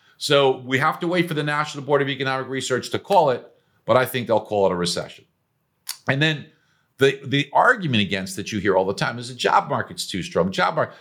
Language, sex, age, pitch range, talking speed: English, male, 50-69, 95-140 Hz, 235 wpm